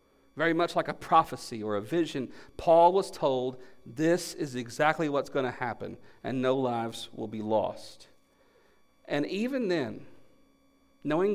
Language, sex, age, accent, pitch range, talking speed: English, male, 40-59, American, 125-170 Hz, 150 wpm